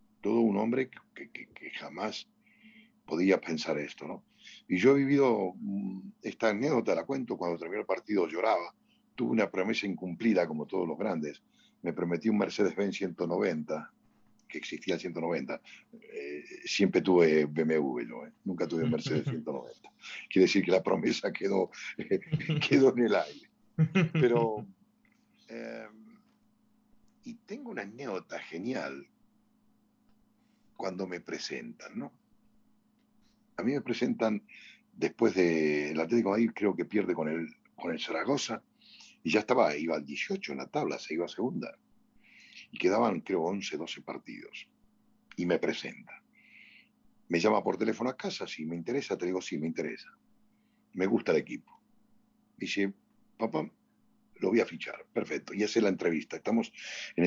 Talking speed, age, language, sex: 155 wpm, 50-69, Spanish, male